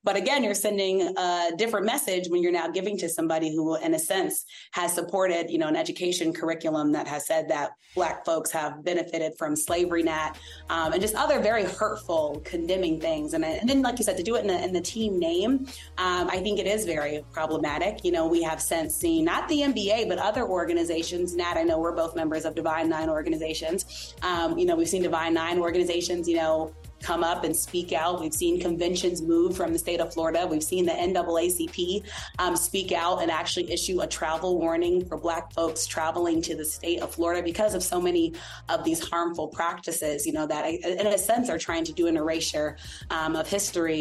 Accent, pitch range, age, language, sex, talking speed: American, 165-200 Hz, 30-49, English, female, 210 wpm